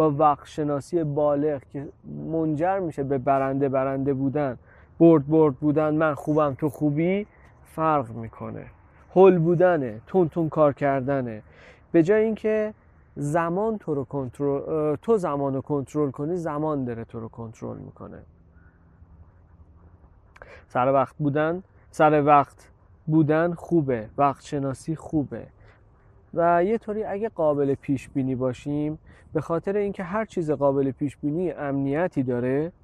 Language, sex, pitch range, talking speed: Persian, male, 120-165 Hz, 125 wpm